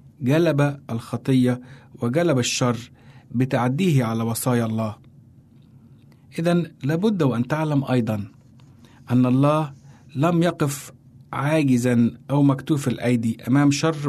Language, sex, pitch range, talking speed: Arabic, male, 125-145 Hz, 100 wpm